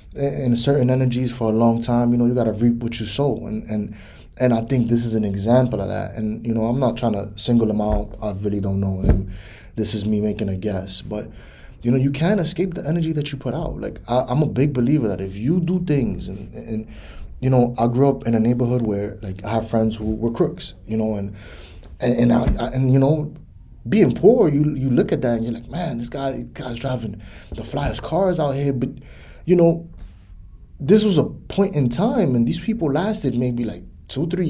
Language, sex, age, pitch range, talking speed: English, male, 20-39, 100-140 Hz, 235 wpm